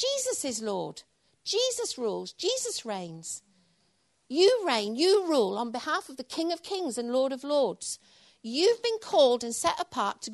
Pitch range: 225-365 Hz